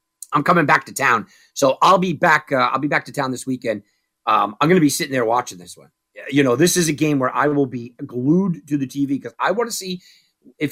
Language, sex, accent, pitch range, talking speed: English, male, American, 130-175 Hz, 265 wpm